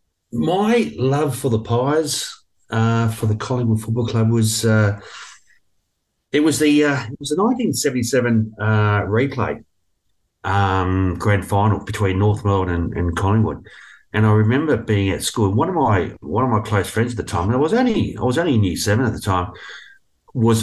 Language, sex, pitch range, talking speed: English, male, 95-115 Hz, 185 wpm